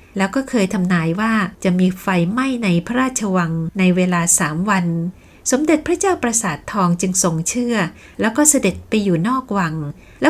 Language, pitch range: Thai, 180-245 Hz